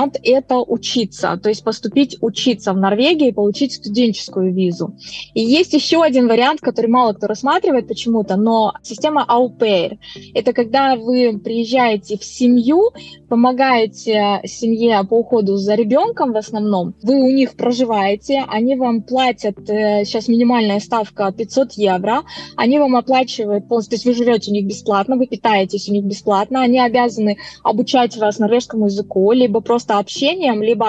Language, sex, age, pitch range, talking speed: Russian, female, 20-39, 205-250 Hz, 150 wpm